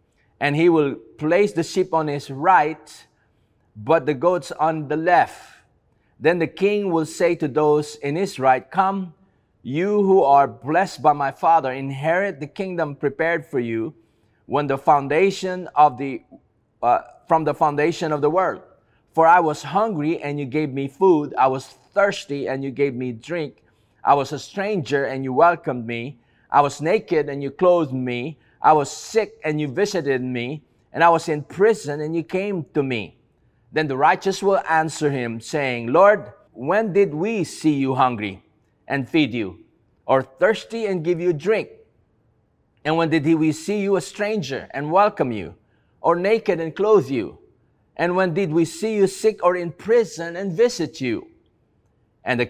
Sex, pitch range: male, 135-180 Hz